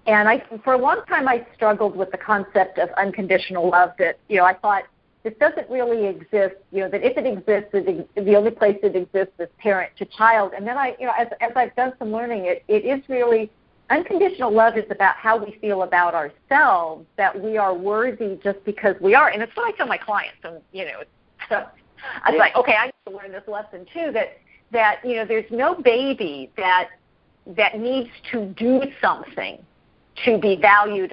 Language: English